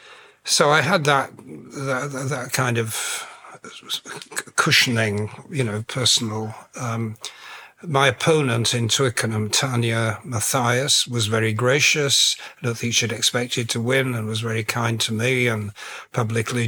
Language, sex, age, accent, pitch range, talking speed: English, male, 60-79, British, 115-130 Hz, 135 wpm